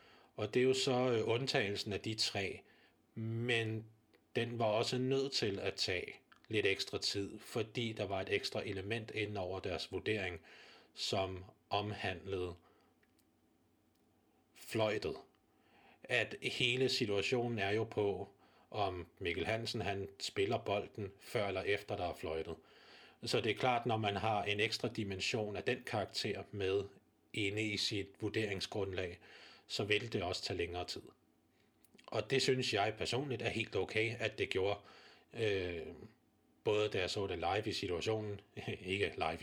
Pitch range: 100-120 Hz